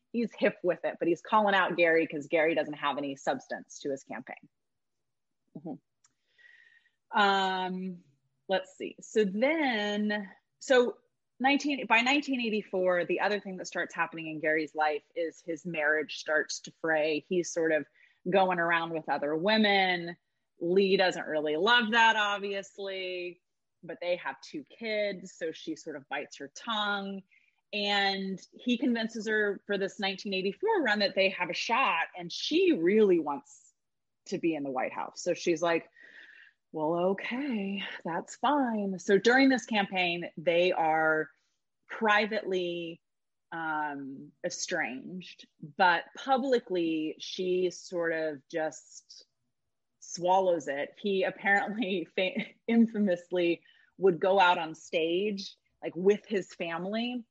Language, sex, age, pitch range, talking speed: English, female, 30-49, 165-210 Hz, 135 wpm